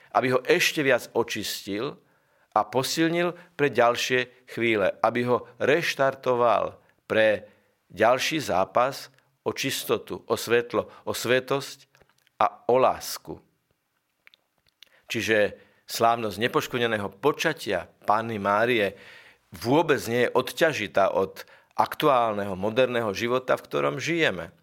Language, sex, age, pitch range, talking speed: Slovak, male, 50-69, 110-135 Hz, 100 wpm